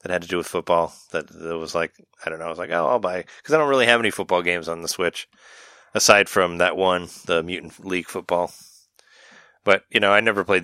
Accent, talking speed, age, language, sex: American, 250 wpm, 30-49, English, male